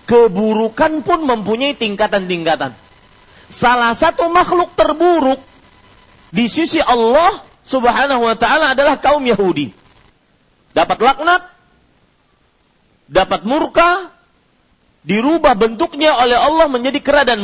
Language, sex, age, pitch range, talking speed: Malay, male, 40-59, 180-295 Hz, 95 wpm